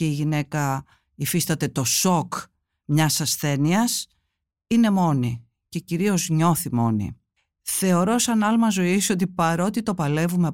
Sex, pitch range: female, 150-215 Hz